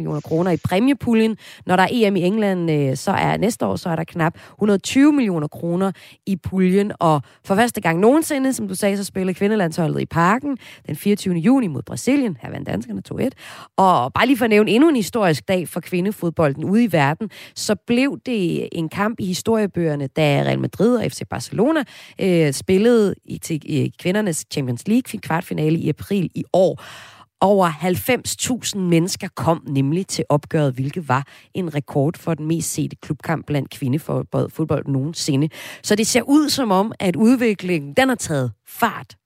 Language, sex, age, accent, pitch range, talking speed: Danish, female, 30-49, native, 155-215 Hz, 175 wpm